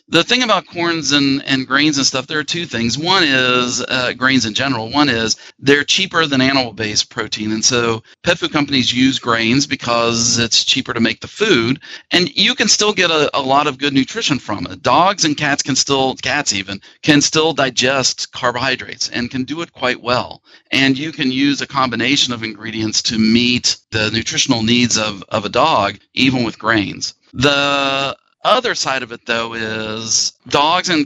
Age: 40-59